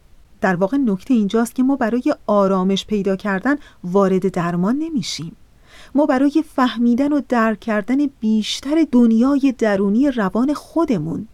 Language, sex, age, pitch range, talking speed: Persian, female, 40-59, 195-255 Hz, 125 wpm